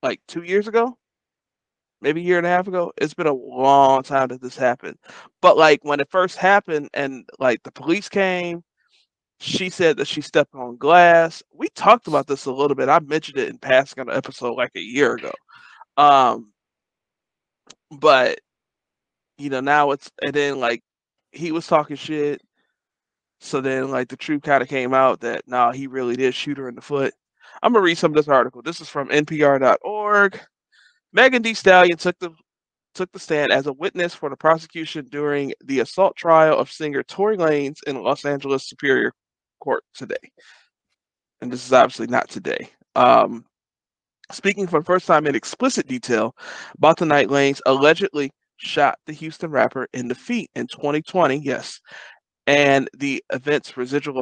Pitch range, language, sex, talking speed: 140-180 Hz, English, male, 180 wpm